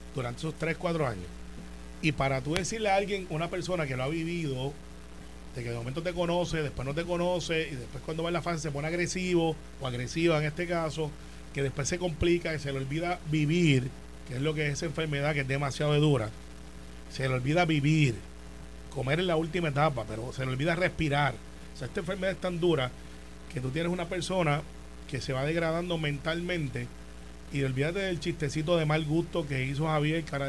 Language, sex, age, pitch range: Spanish, male, 30-49, 130-175 Hz